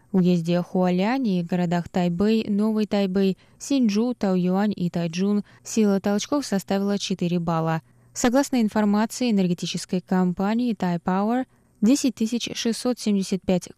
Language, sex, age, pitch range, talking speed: Russian, female, 20-39, 170-205 Hz, 100 wpm